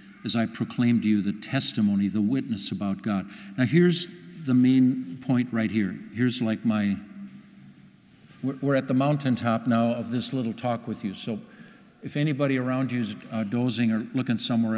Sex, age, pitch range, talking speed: male, 50-69, 120-195 Hz, 170 wpm